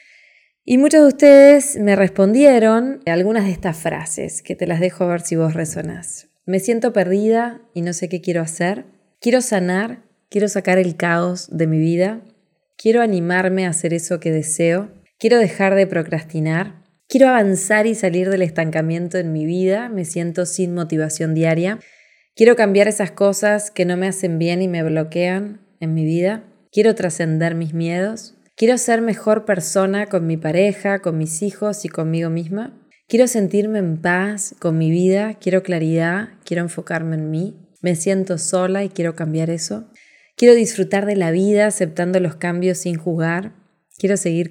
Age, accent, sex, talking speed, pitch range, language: 20-39, Argentinian, female, 170 wpm, 170-205 Hz, Spanish